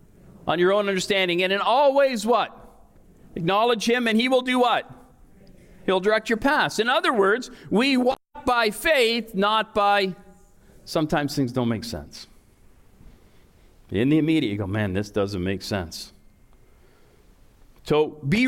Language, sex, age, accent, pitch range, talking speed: English, male, 50-69, American, 150-230 Hz, 145 wpm